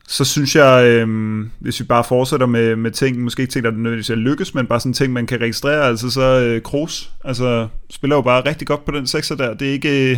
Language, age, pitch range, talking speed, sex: Danish, 20-39, 115-135 Hz, 255 wpm, male